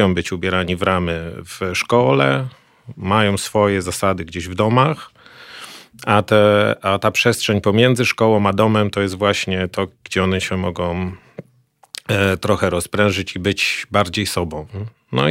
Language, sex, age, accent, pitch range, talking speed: Polish, male, 30-49, native, 90-105 Hz, 145 wpm